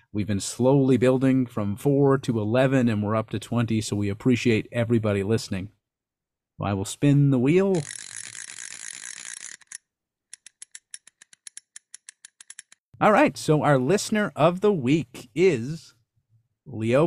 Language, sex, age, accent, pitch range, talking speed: English, male, 40-59, American, 105-140 Hz, 115 wpm